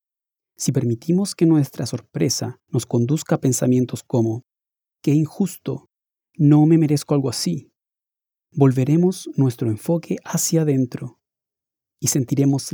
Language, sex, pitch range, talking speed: Spanish, male, 120-155 Hz, 115 wpm